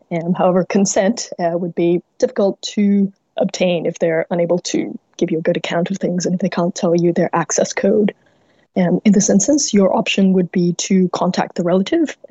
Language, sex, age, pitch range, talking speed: English, female, 20-39, 175-195 Hz, 200 wpm